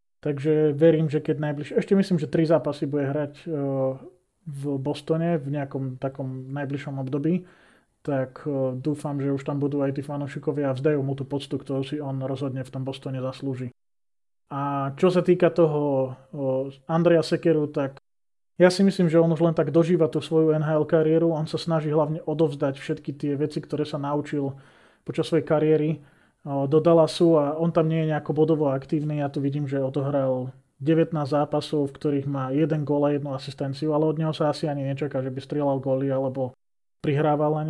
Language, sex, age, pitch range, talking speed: Slovak, male, 20-39, 135-160 Hz, 190 wpm